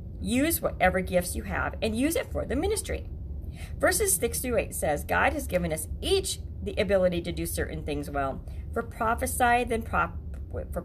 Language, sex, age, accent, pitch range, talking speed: English, female, 40-59, American, 160-245 Hz, 185 wpm